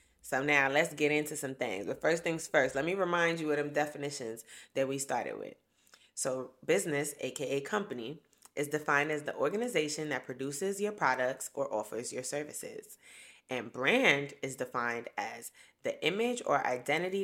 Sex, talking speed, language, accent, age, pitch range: female, 165 wpm, English, American, 20-39, 140-180 Hz